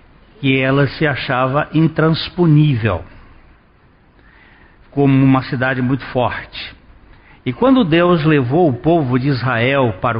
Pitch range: 110-155 Hz